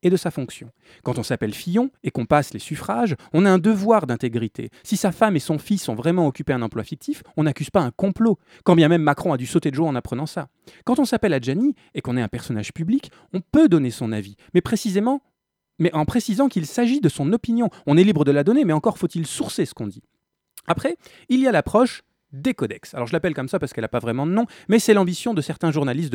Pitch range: 125-205 Hz